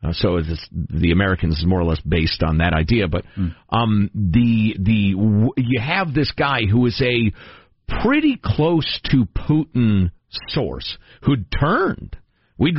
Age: 50-69